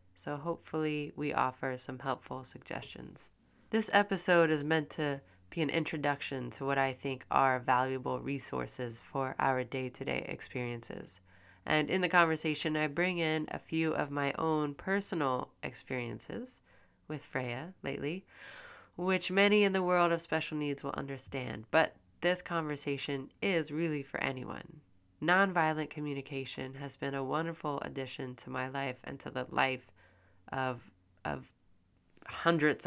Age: 20-39